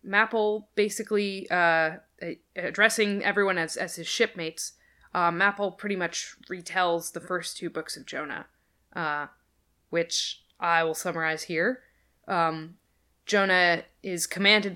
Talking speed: 120 wpm